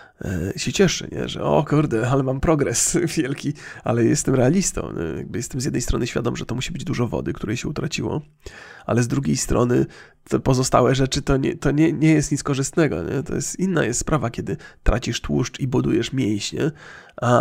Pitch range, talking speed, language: 130-160 Hz, 195 wpm, Polish